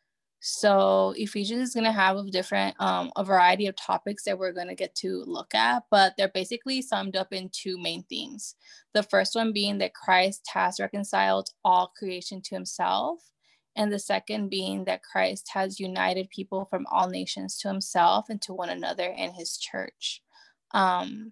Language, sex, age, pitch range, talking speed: English, female, 20-39, 185-215 Hz, 180 wpm